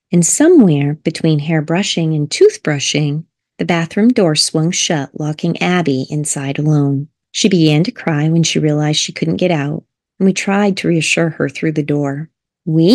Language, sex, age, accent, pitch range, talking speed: English, female, 30-49, American, 150-180 Hz, 170 wpm